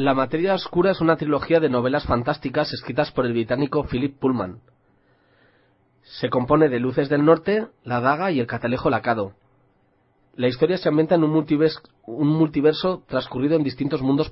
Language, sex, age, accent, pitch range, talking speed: Spanish, male, 30-49, Spanish, 120-150 Hz, 160 wpm